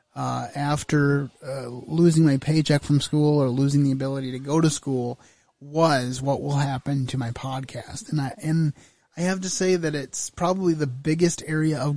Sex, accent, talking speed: male, American, 185 wpm